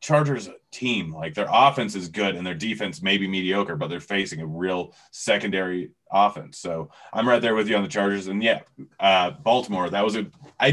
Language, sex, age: English, male, 30-49